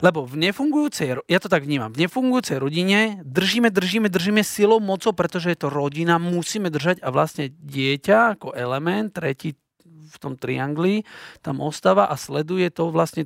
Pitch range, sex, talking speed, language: 140-185 Hz, male, 165 wpm, Slovak